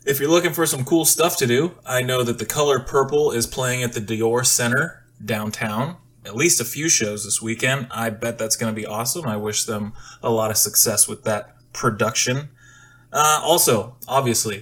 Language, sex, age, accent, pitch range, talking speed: English, male, 20-39, American, 115-135 Hz, 200 wpm